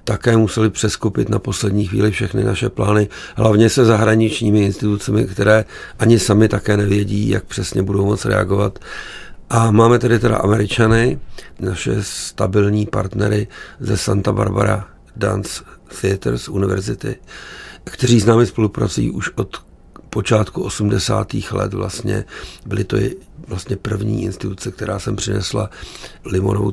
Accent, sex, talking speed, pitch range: native, male, 130 wpm, 100-110 Hz